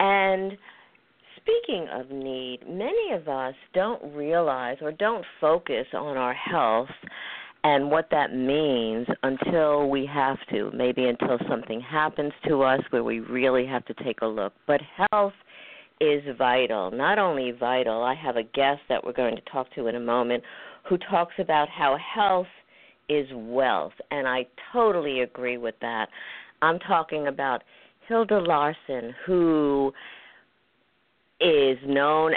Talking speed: 145 wpm